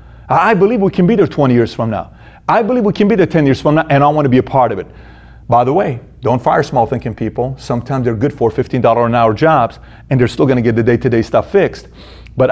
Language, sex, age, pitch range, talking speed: English, male, 40-59, 135-215 Hz, 280 wpm